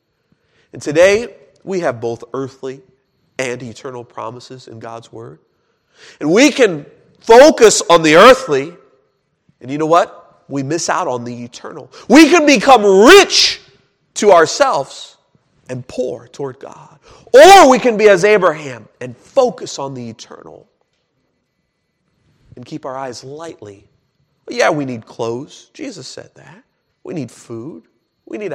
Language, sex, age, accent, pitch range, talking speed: English, male, 40-59, American, 120-170 Hz, 140 wpm